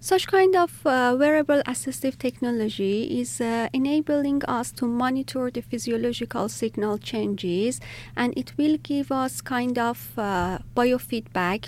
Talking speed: 135 wpm